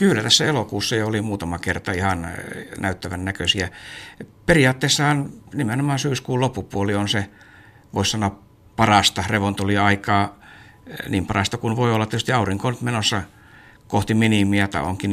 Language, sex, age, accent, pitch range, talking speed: Finnish, male, 60-79, native, 95-110 Hz, 125 wpm